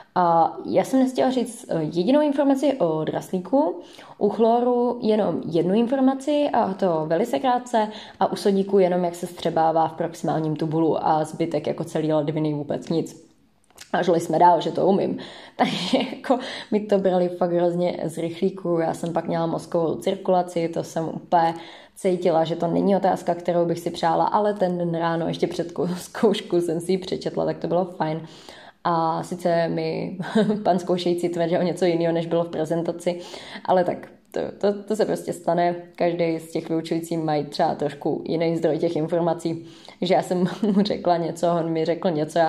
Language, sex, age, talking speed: Czech, female, 20-39, 180 wpm